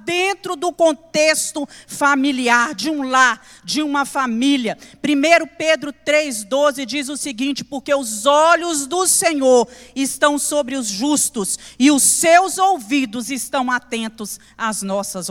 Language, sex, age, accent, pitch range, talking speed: Portuguese, female, 40-59, Brazilian, 230-305 Hz, 130 wpm